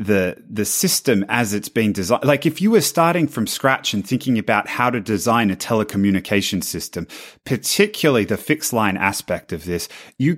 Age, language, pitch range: 30-49, English, 105-140 Hz